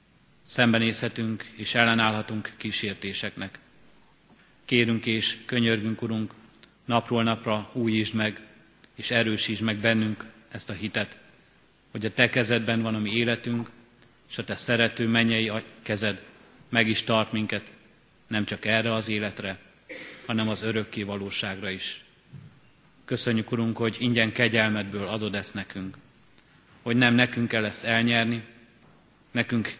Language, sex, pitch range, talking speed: Hungarian, male, 105-115 Hz, 125 wpm